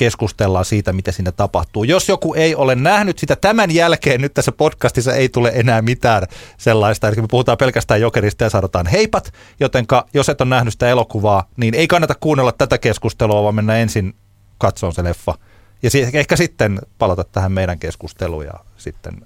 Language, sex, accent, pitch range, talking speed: Finnish, male, native, 95-130 Hz, 180 wpm